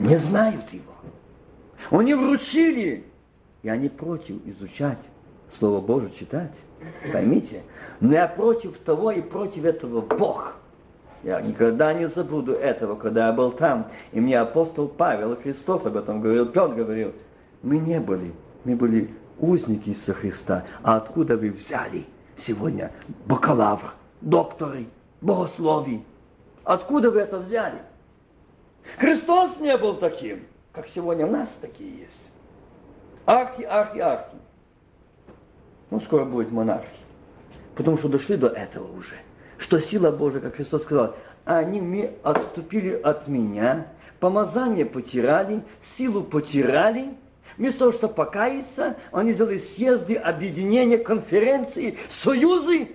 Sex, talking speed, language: male, 120 wpm, Russian